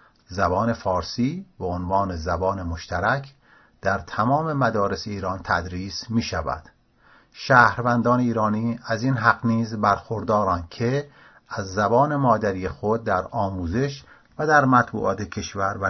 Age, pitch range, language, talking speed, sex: 40-59, 100-120 Hz, English, 120 wpm, male